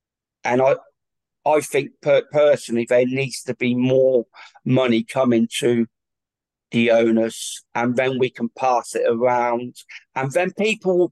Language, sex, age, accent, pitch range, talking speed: English, male, 50-69, British, 120-155 Hz, 145 wpm